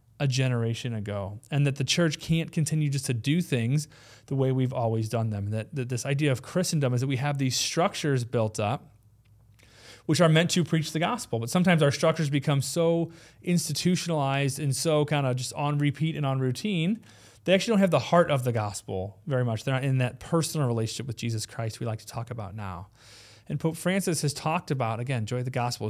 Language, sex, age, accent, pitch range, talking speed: English, male, 30-49, American, 115-155 Hz, 220 wpm